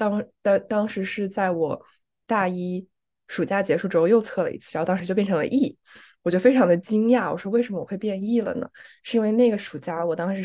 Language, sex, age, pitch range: Chinese, female, 20-39, 175-230 Hz